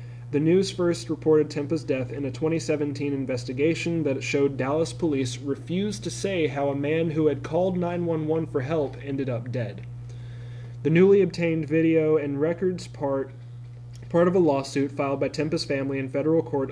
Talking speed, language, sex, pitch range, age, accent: 170 wpm, English, male, 125-155 Hz, 30-49, American